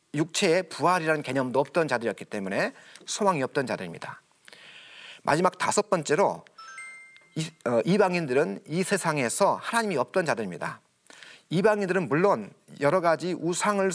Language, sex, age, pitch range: Korean, male, 40-59, 145-205 Hz